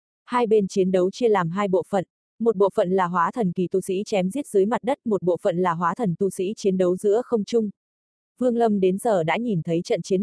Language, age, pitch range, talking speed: Vietnamese, 20-39, 180-220 Hz, 265 wpm